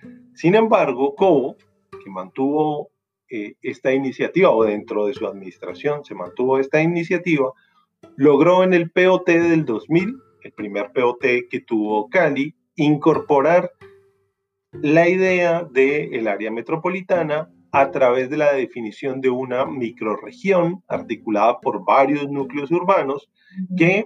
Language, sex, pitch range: Spanish, male, 120-180 Hz